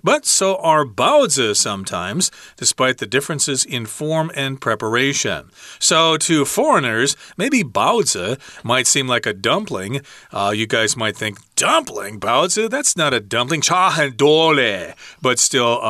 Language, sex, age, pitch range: Chinese, male, 40-59, 110-145 Hz